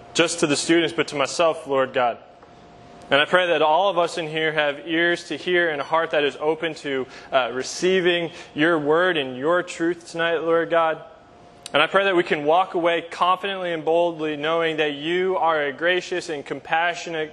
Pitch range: 150-185 Hz